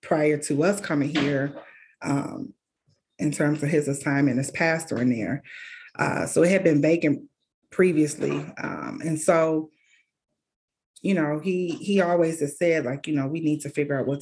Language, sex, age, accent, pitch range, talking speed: English, female, 30-49, American, 140-160 Hz, 175 wpm